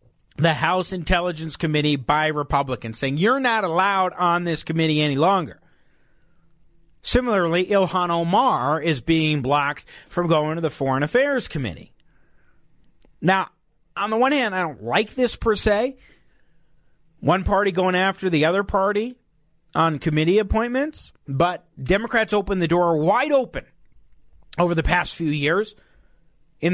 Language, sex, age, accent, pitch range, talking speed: English, male, 40-59, American, 150-205 Hz, 140 wpm